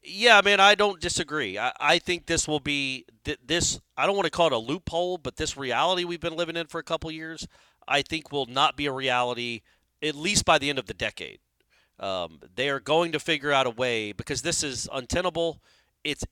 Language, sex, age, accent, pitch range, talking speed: English, male, 40-59, American, 155-200 Hz, 230 wpm